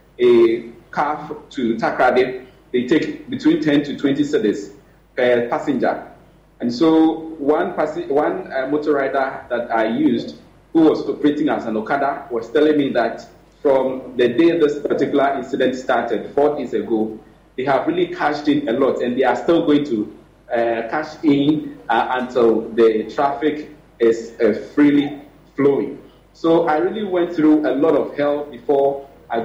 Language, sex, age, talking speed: English, male, 40-59, 160 wpm